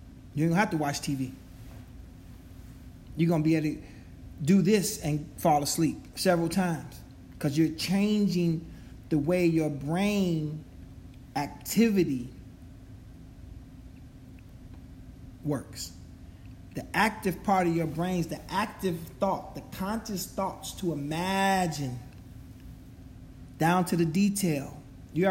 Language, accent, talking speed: English, American, 115 wpm